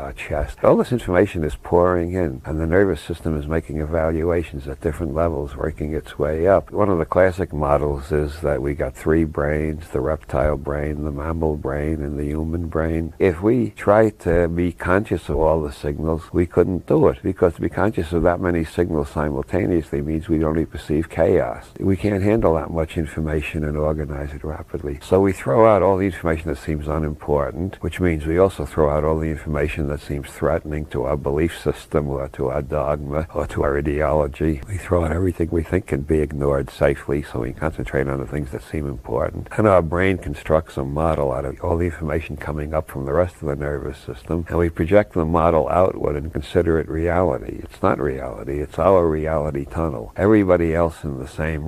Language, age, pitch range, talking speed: English, 60-79, 75-85 Hz, 205 wpm